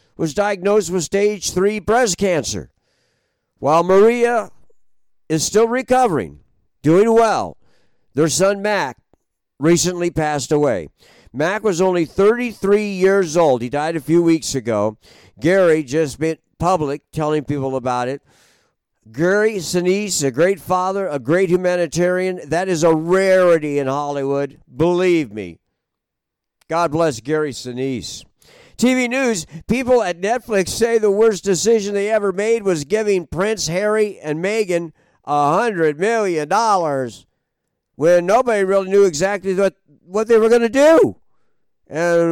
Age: 50-69